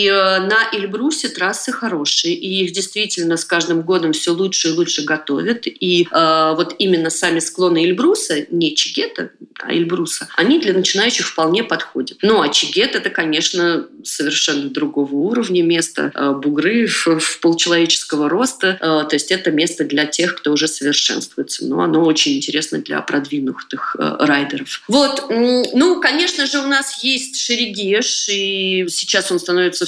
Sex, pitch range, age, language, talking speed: female, 165-240 Hz, 30-49, Russian, 145 wpm